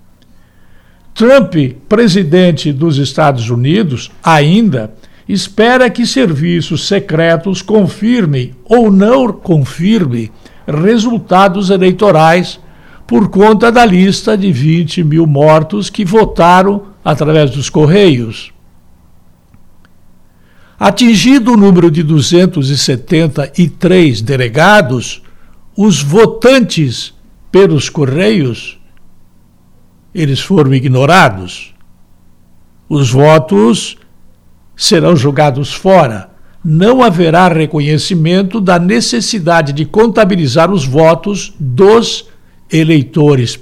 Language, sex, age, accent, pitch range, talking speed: Portuguese, male, 60-79, Brazilian, 140-200 Hz, 80 wpm